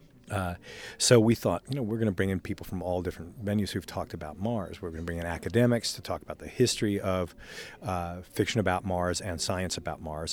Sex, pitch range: male, 90-105 Hz